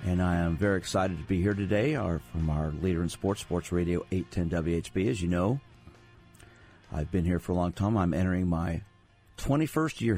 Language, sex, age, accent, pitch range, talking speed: English, male, 50-69, American, 85-100 Hz, 195 wpm